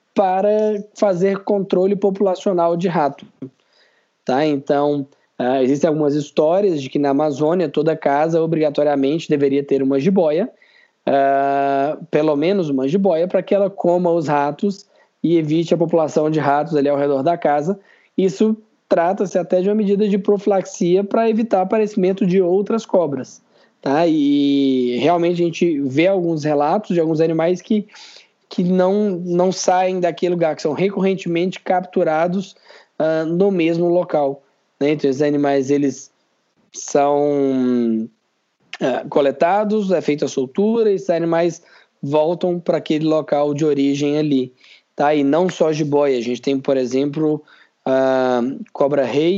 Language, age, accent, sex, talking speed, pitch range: Portuguese, 20-39, Brazilian, male, 145 wpm, 140-185 Hz